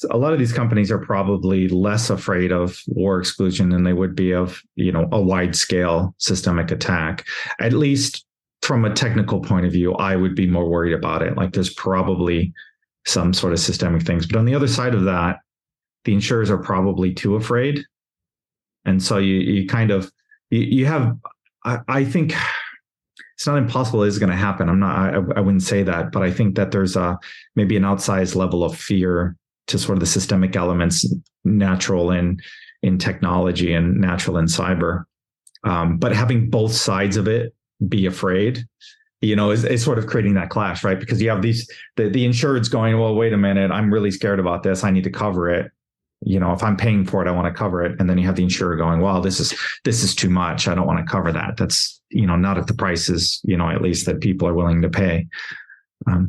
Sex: male